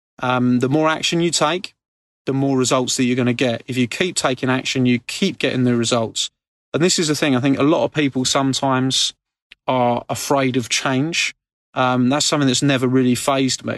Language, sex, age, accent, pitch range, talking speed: English, male, 30-49, British, 125-140 Hz, 210 wpm